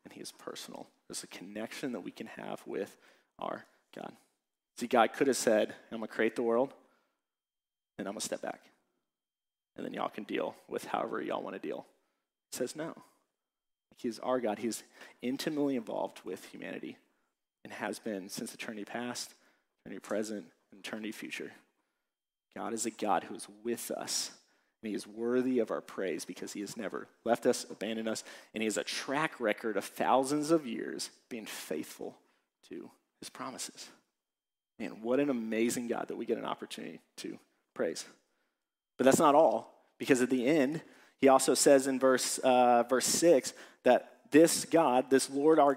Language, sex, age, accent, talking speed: English, male, 30-49, American, 180 wpm